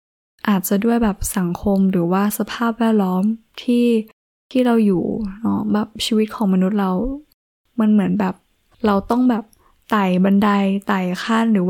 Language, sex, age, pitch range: Thai, female, 10-29, 190-220 Hz